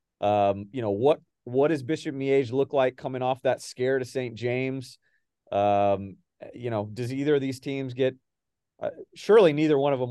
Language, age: English, 40-59